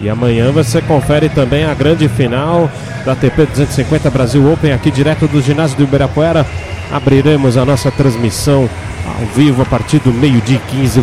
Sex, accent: male, Brazilian